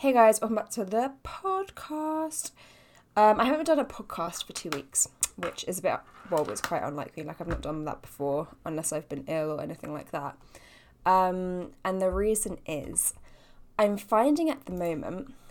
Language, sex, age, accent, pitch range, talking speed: English, female, 10-29, British, 160-195 Hz, 185 wpm